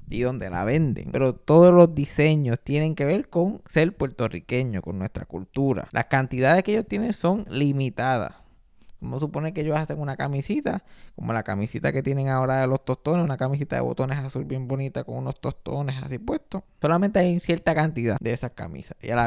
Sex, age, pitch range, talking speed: male, 20-39, 130-175 Hz, 195 wpm